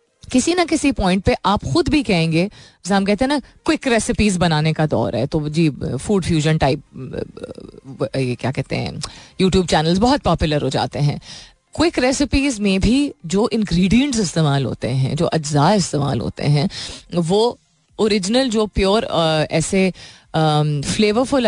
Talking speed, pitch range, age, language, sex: 155 wpm, 150-220 Hz, 30-49, Hindi, female